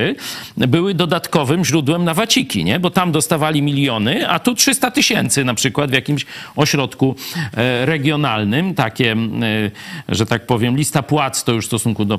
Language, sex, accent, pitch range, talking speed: Polish, male, native, 115-160 Hz, 155 wpm